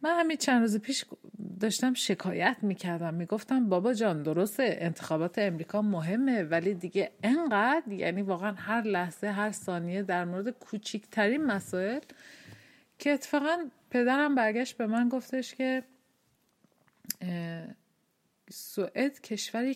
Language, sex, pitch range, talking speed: Swedish, female, 180-240 Hz, 115 wpm